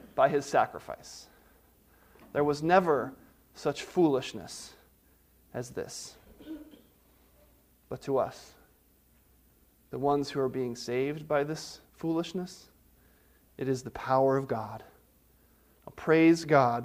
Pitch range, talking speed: 125-165 Hz, 105 wpm